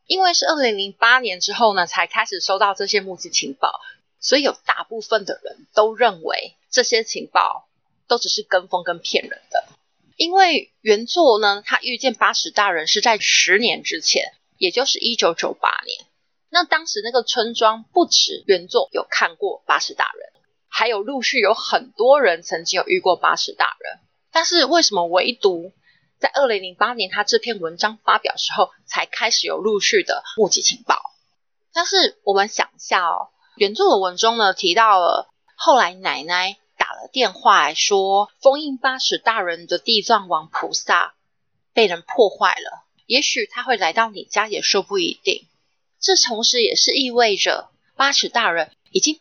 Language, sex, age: Chinese, female, 20-39